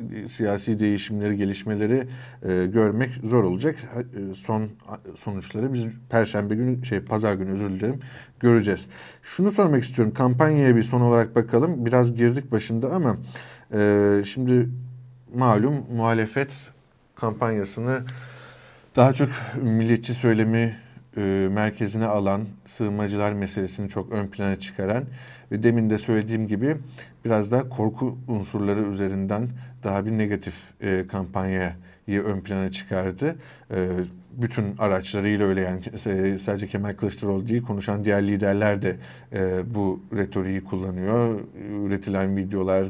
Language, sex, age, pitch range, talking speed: Turkish, male, 50-69, 100-125 Hz, 115 wpm